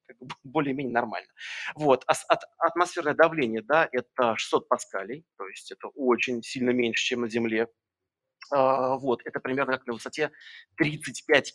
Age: 30-49